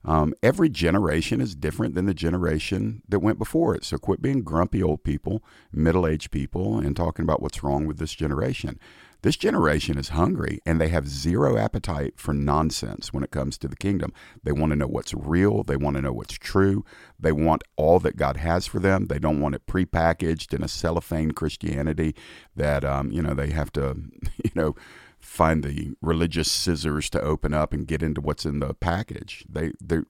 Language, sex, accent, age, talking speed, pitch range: English, male, American, 50-69, 195 wpm, 75-95 Hz